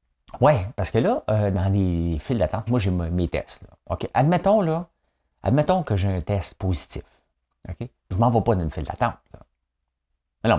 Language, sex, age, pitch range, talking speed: French, male, 50-69, 65-110 Hz, 200 wpm